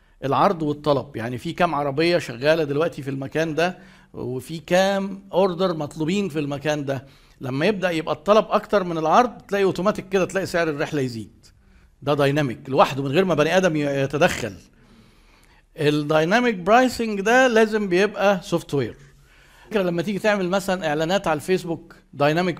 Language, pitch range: Arabic, 145-185 Hz